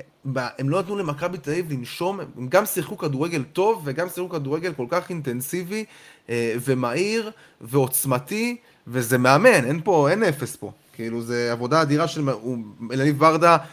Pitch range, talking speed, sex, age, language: 130-180 Hz, 150 wpm, male, 20-39, Hebrew